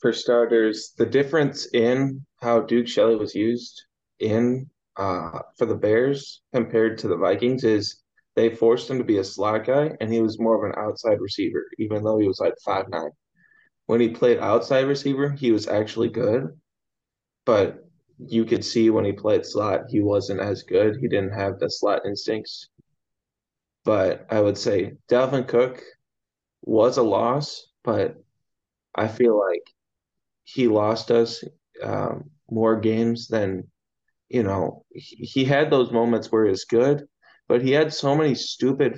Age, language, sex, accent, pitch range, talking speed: 20-39, English, male, American, 110-130 Hz, 165 wpm